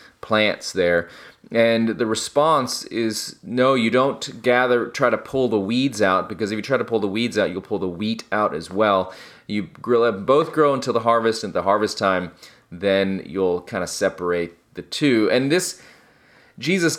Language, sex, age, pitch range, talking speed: English, male, 30-49, 95-120 Hz, 185 wpm